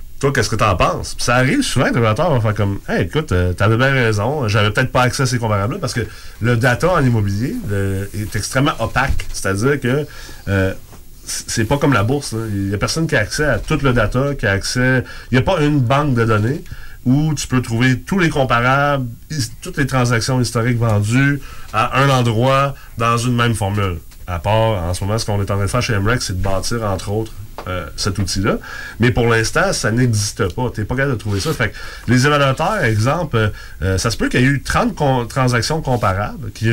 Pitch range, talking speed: 105-135 Hz, 235 wpm